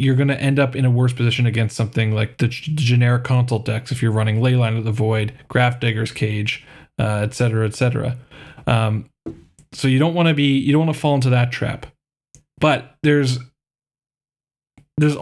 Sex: male